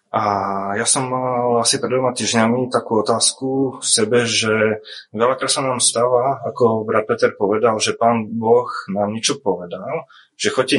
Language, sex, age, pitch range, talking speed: Slovak, male, 20-39, 105-120 Hz, 160 wpm